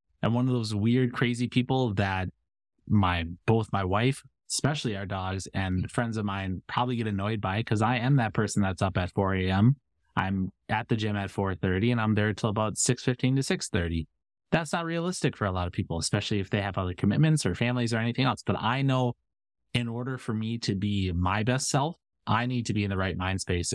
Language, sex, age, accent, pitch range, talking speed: English, male, 20-39, American, 95-120 Hz, 220 wpm